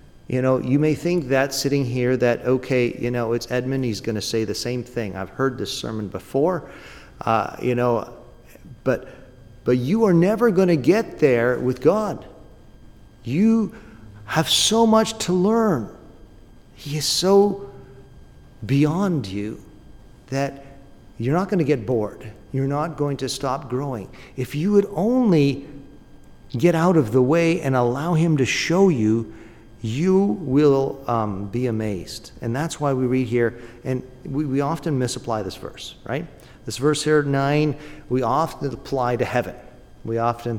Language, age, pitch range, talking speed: English, 50-69, 120-150 Hz, 155 wpm